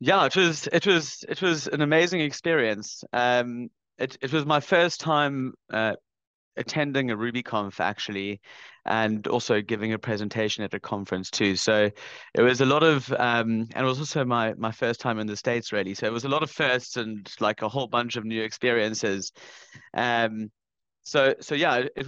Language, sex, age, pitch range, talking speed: English, male, 30-49, 105-130 Hz, 195 wpm